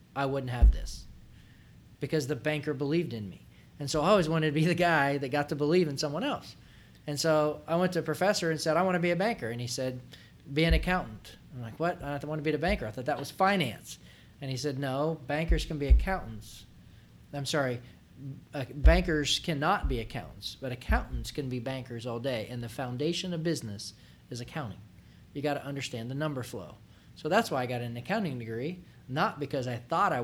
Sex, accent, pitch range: male, American, 120-155 Hz